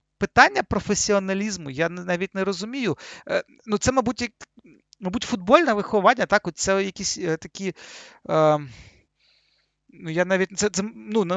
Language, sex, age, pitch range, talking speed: Ukrainian, male, 40-59, 165-200 Hz, 80 wpm